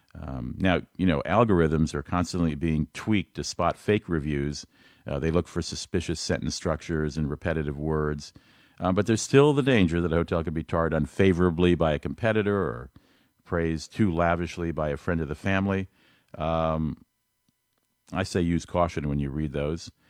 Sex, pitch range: male, 80-95 Hz